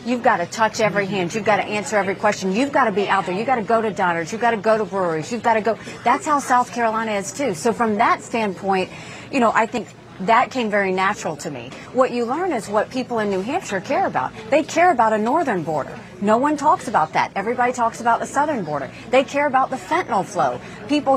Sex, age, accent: female, 40-59, American